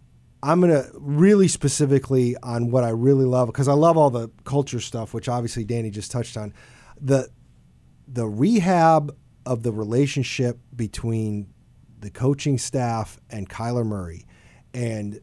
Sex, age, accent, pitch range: male, 40-59, American, 115-140 Hz